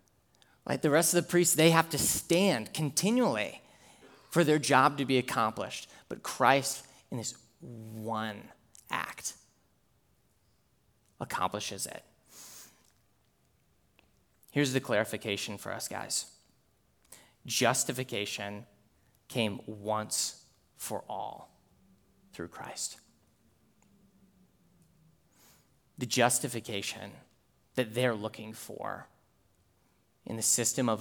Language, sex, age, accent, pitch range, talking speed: English, male, 20-39, American, 105-130 Hz, 95 wpm